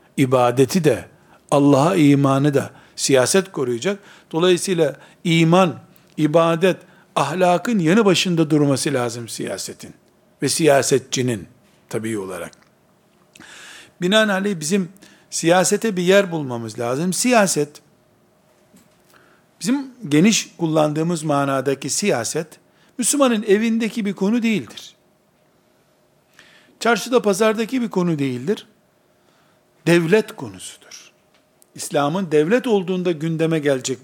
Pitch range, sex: 150-220 Hz, male